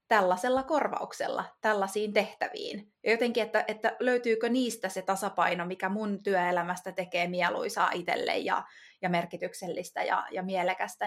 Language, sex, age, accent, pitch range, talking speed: Finnish, female, 20-39, native, 180-225 Hz, 130 wpm